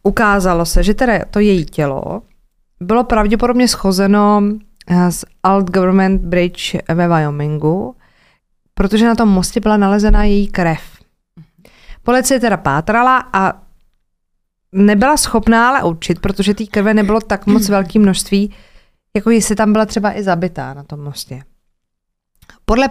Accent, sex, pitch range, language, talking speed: native, female, 175-210 Hz, Czech, 135 wpm